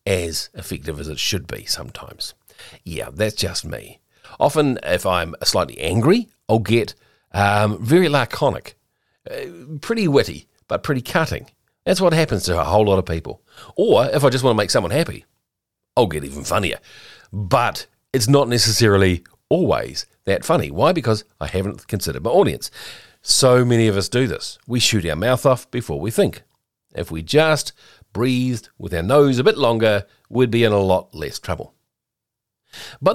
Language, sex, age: English, male, 40-59